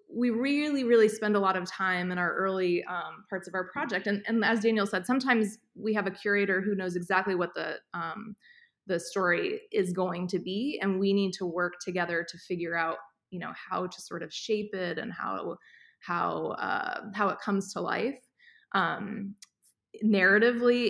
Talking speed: 190 wpm